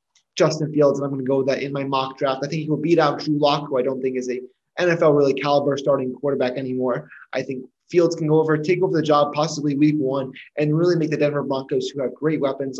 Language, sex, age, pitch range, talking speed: English, male, 20-39, 140-185 Hz, 265 wpm